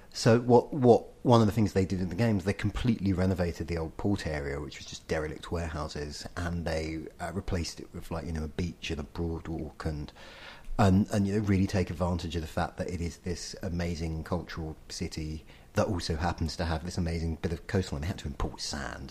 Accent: British